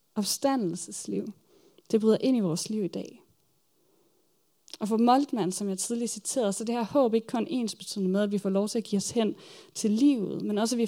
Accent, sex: native, female